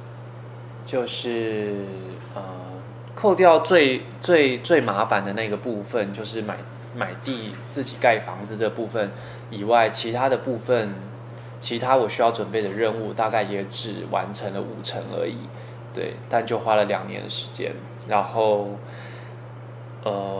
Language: Chinese